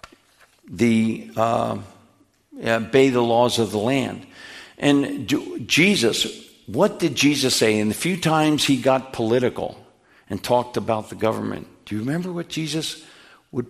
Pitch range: 110-150 Hz